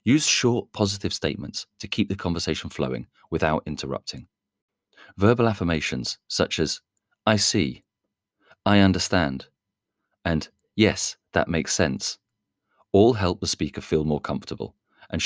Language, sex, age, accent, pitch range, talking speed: English, male, 30-49, British, 75-100 Hz, 125 wpm